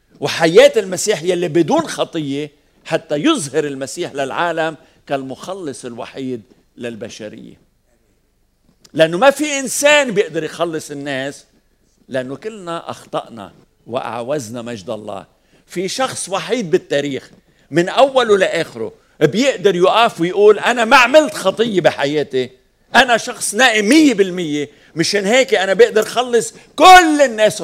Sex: male